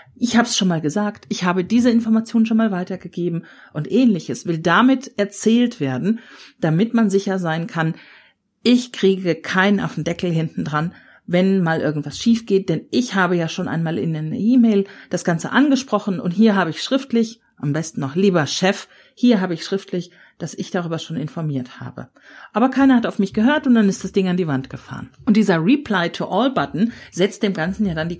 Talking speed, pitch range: 205 wpm, 170-230 Hz